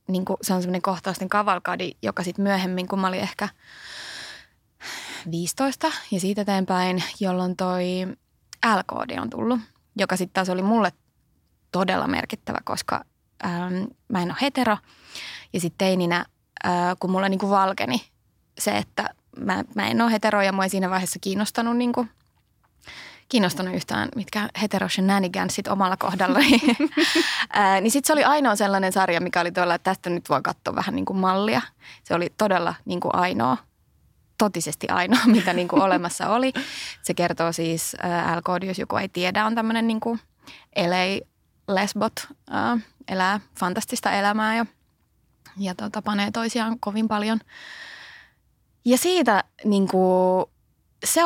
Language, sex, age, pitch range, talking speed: Finnish, female, 20-39, 180-220 Hz, 145 wpm